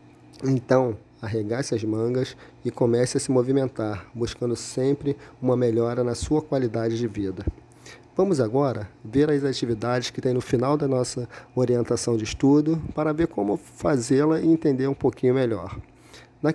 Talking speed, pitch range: 150 wpm, 115-150 Hz